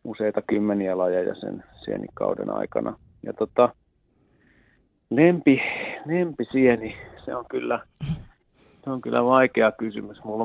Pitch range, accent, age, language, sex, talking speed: 105-120 Hz, native, 30-49, Finnish, male, 115 wpm